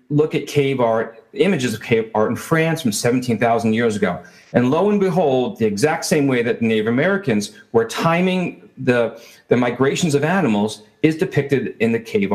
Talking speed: 185 wpm